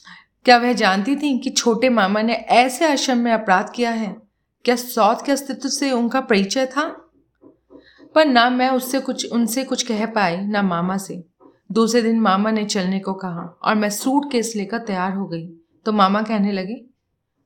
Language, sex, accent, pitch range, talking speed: Hindi, female, native, 190-250 Hz, 180 wpm